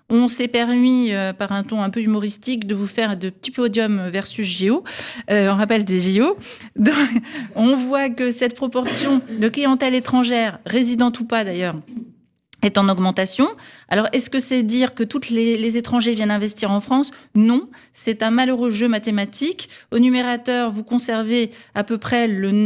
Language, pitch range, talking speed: French, 195-245 Hz, 170 wpm